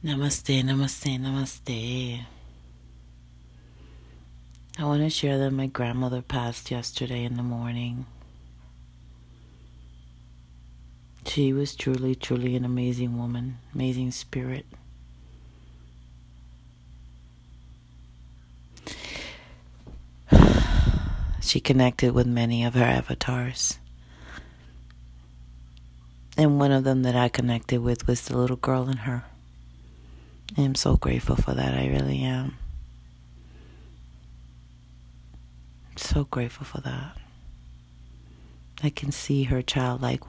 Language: English